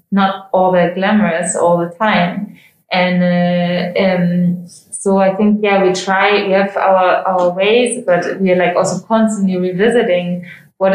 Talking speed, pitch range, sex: 160 wpm, 175-195 Hz, female